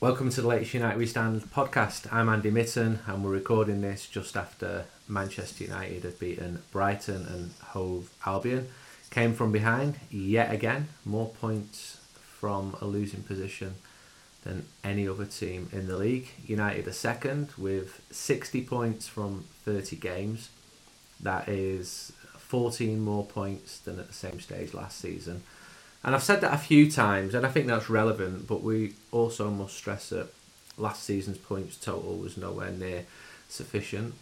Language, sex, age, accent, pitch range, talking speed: English, male, 30-49, British, 95-115 Hz, 160 wpm